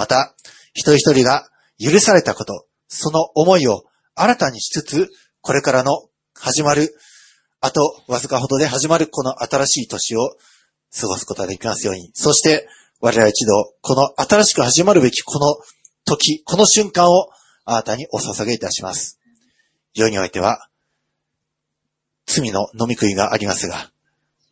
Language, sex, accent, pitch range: Japanese, male, native, 120-190 Hz